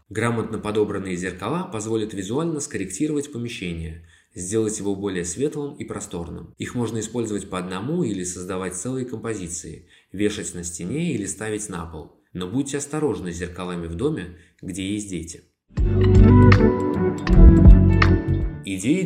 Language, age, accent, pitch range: Russian, 20-39, native, 90-120 Hz